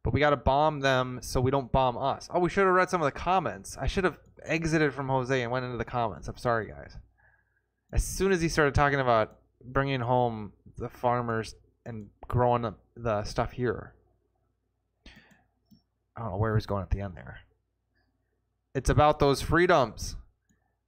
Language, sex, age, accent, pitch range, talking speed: English, male, 20-39, American, 105-135 Hz, 180 wpm